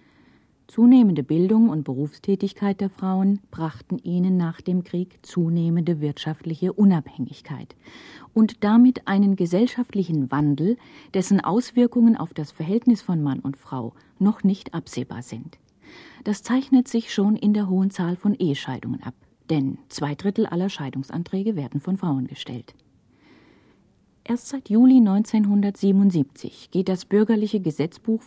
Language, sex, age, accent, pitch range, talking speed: German, female, 40-59, German, 145-205 Hz, 125 wpm